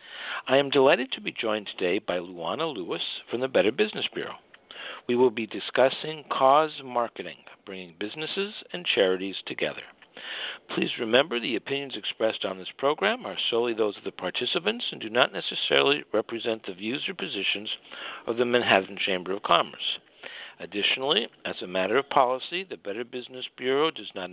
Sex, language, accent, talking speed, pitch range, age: male, English, American, 165 wpm, 105-135 Hz, 60-79